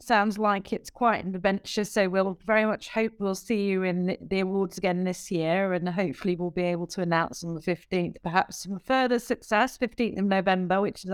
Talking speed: 210 wpm